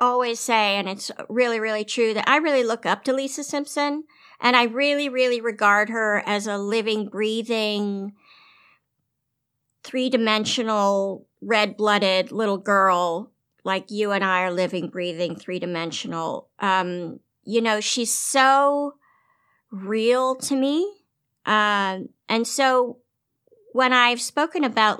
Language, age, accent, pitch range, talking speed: English, 50-69, American, 200-255 Hz, 130 wpm